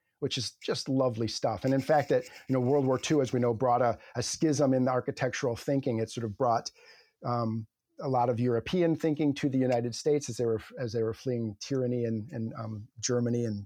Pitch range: 120-140 Hz